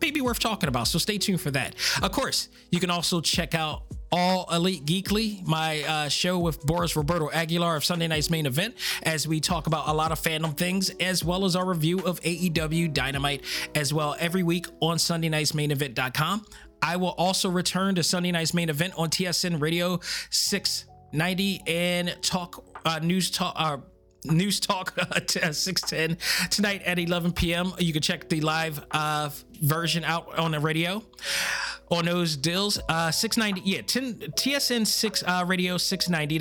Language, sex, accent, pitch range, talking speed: English, male, American, 155-185 Hz, 175 wpm